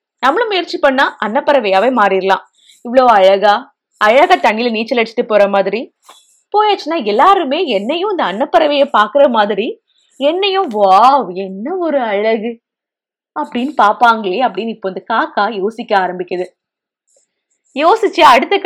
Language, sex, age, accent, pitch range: Tamil, female, 20-39, native, 205-300 Hz